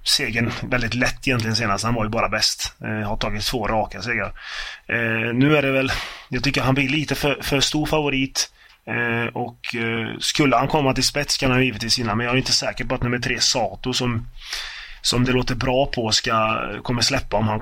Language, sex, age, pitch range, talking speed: Swedish, male, 20-39, 115-130 Hz, 220 wpm